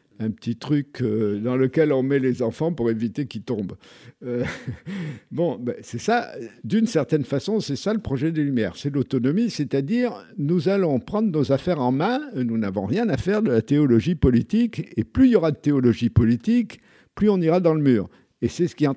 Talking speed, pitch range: 205 wpm, 115-170 Hz